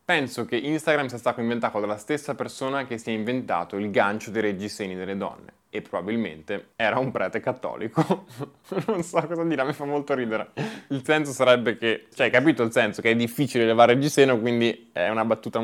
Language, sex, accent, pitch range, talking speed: Italian, male, native, 110-150 Hz, 200 wpm